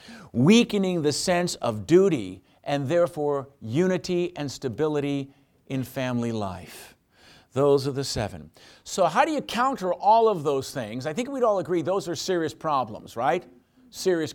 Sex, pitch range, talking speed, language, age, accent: male, 150-195 Hz, 155 wpm, English, 50-69, American